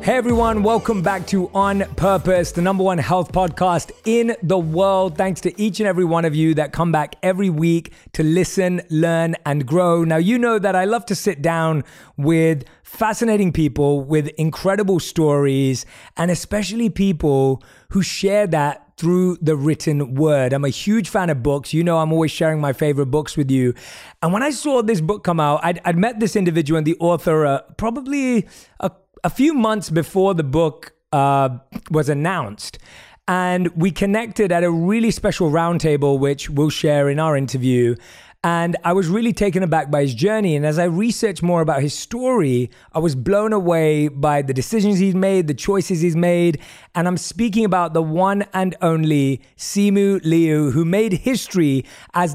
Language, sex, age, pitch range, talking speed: English, male, 20-39, 155-195 Hz, 185 wpm